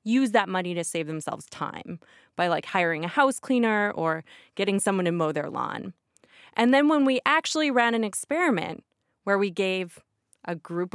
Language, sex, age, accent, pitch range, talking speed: English, female, 20-39, American, 175-220 Hz, 180 wpm